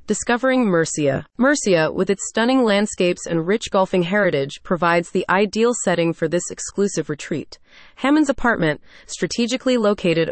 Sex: female